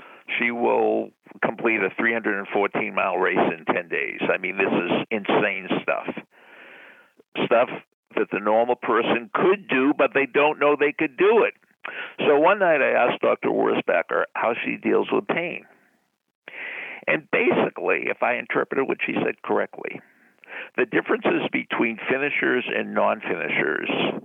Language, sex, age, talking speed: English, male, 60-79, 140 wpm